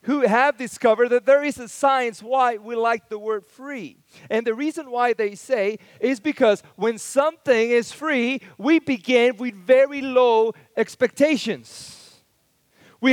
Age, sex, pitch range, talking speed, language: 30-49, male, 215-290 Hz, 150 wpm, English